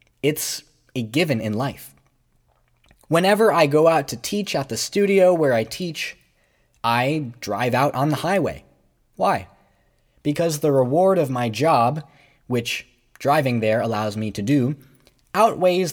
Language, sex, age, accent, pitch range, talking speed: English, male, 20-39, American, 115-160 Hz, 145 wpm